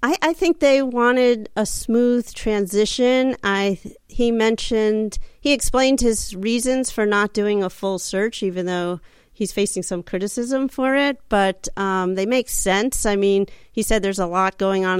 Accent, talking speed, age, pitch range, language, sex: American, 170 wpm, 40-59, 180-215 Hz, English, female